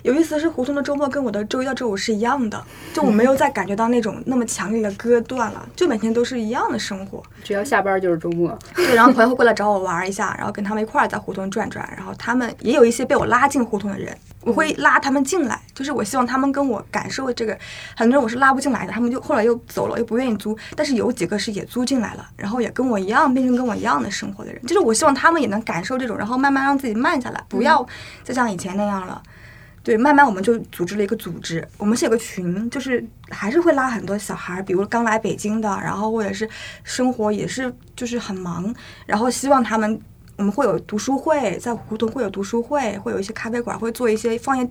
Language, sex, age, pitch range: Chinese, female, 20-39, 210-260 Hz